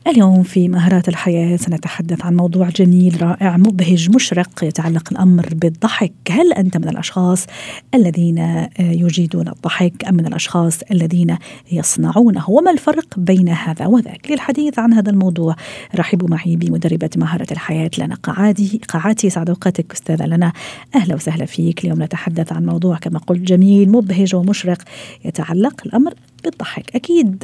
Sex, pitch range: female, 175-220 Hz